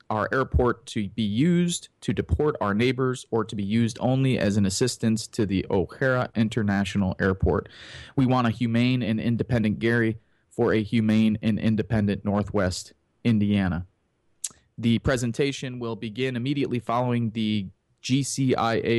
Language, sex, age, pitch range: English, male, 30-49, 110-130 Hz